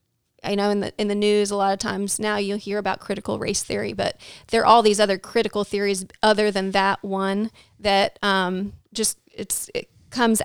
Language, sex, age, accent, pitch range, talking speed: English, female, 30-49, American, 205-260 Hz, 205 wpm